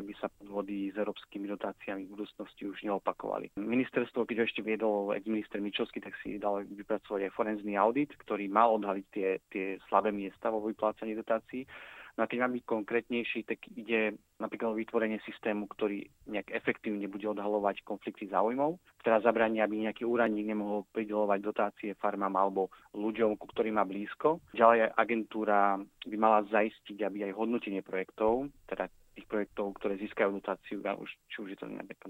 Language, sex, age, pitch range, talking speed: Slovak, male, 30-49, 100-115 Hz, 165 wpm